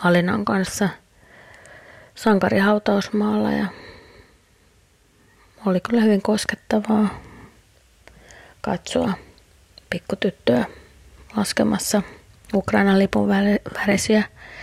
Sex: female